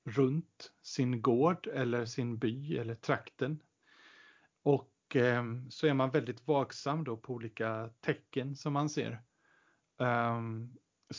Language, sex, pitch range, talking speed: Swedish, male, 120-140 Hz, 120 wpm